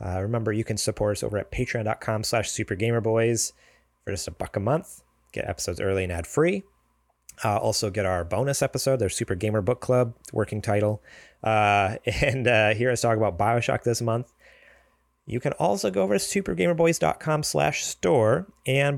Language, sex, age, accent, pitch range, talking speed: English, male, 30-49, American, 95-125 Hz, 170 wpm